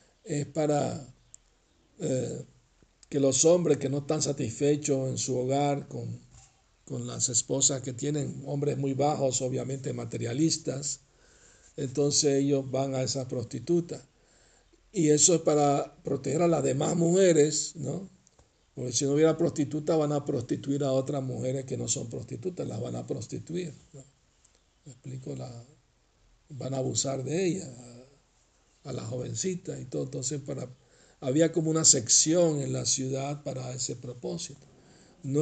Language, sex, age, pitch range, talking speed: Spanish, male, 60-79, 130-155 Hz, 145 wpm